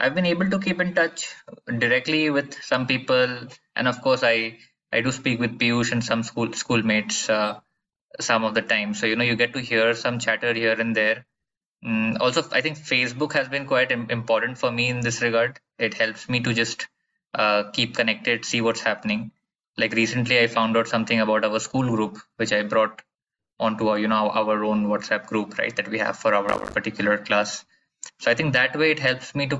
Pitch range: 115-135 Hz